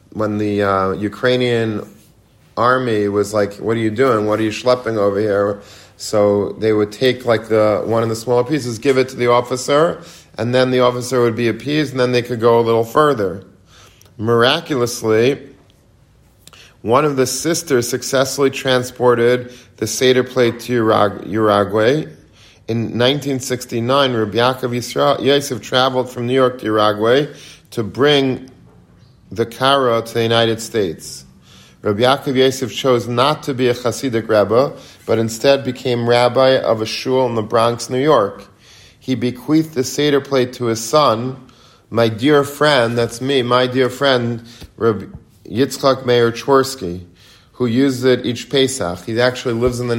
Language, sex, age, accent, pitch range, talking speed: English, male, 40-59, American, 110-130 Hz, 155 wpm